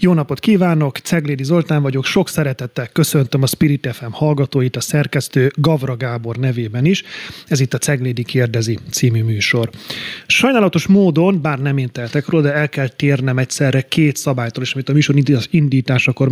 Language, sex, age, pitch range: Hungarian, male, 30-49, 125-150 Hz